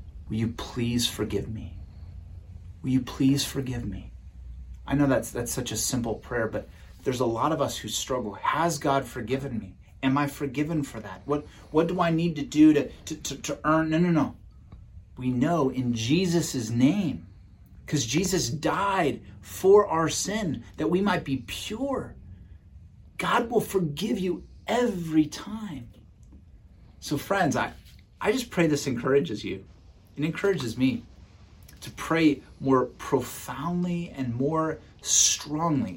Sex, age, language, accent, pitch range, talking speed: male, 30-49, English, American, 100-155 Hz, 150 wpm